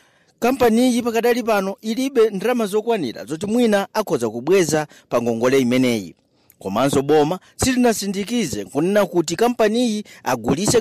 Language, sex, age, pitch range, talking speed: English, male, 40-59, 140-210 Hz, 115 wpm